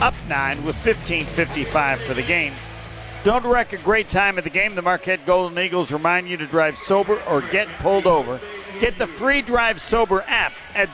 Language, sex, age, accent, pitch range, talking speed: English, male, 50-69, American, 155-195 Hz, 190 wpm